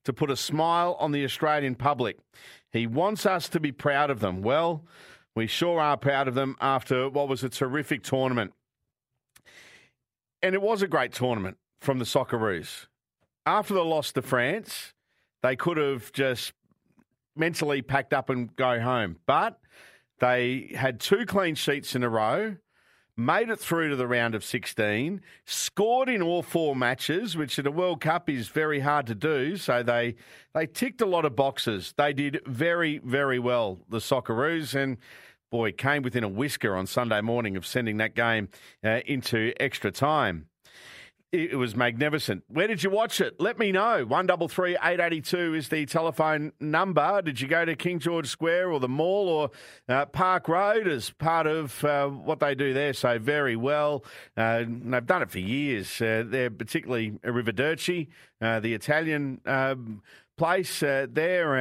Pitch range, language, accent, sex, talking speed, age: 120-160 Hz, English, Australian, male, 170 wpm, 50-69